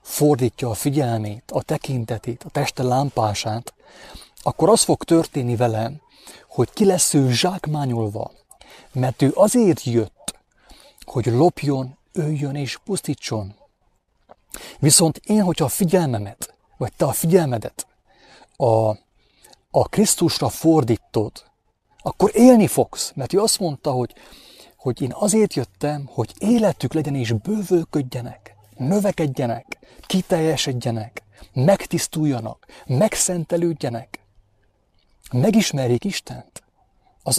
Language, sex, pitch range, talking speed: English, male, 115-160 Hz, 105 wpm